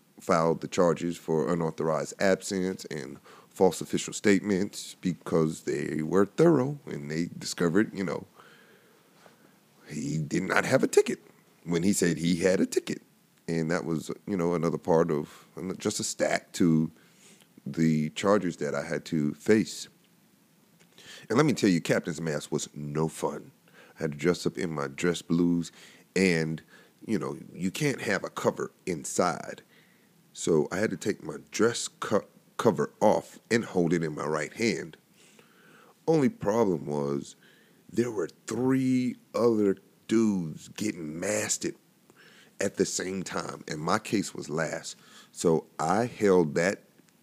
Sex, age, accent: male, 30-49, American